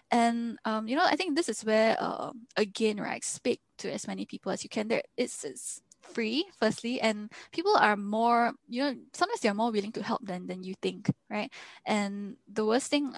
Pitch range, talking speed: 200-235 Hz, 200 wpm